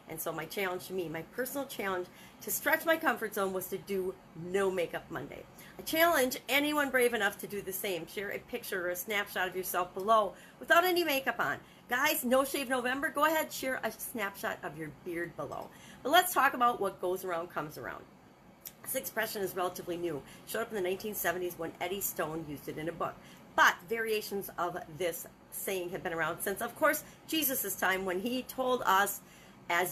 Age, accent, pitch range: 40-59, American, 175-240 Hz